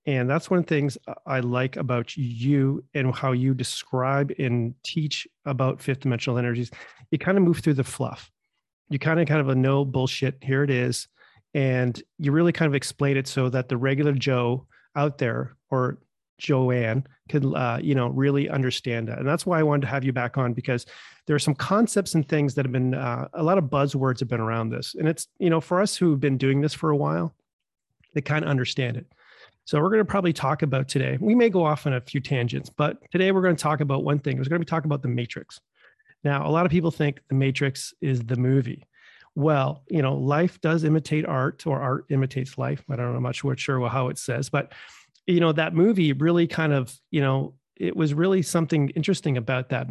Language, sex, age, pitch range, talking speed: English, male, 30-49, 130-155 Hz, 225 wpm